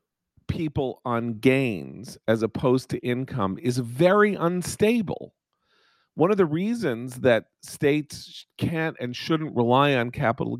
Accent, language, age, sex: American, English, 40-59, male